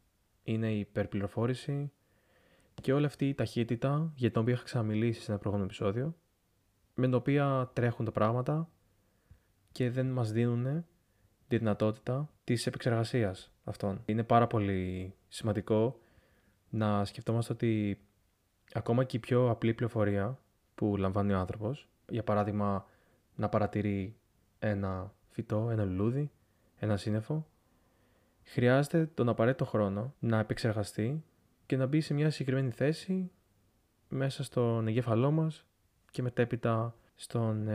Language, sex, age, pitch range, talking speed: Greek, male, 20-39, 100-125 Hz, 125 wpm